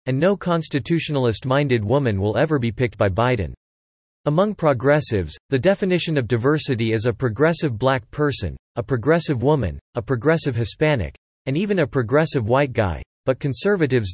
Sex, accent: male, American